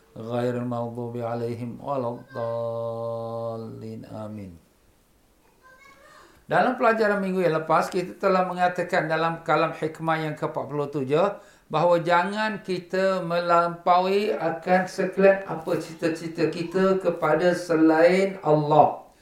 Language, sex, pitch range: Malay, male, 155-190 Hz